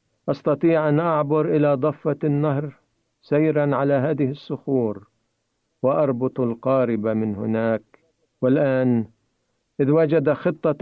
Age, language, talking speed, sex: 50-69, Arabic, 100 wpm, male